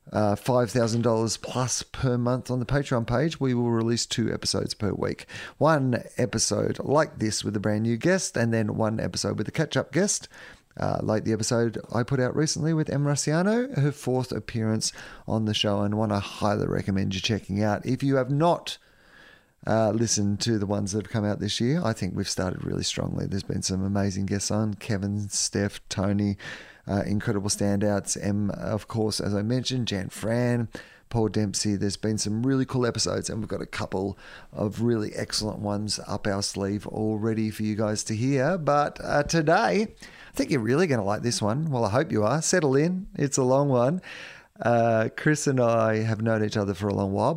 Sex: male